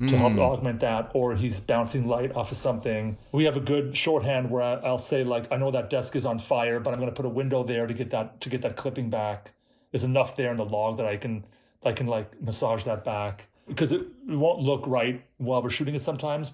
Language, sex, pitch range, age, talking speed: English, male, 115-145 Hz, 30-49, 245 wpm